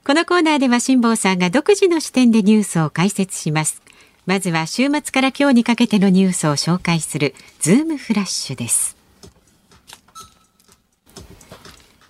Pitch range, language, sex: 160-250 Hz, Japanese, female